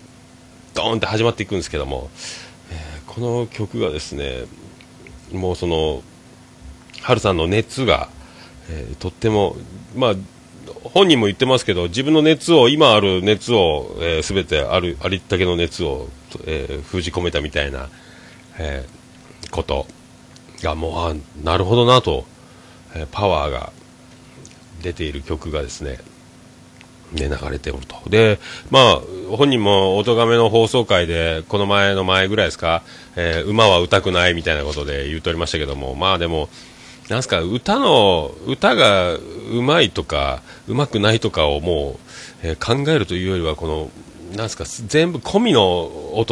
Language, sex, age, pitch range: Japanese, male, 40-59, 80-115 Hz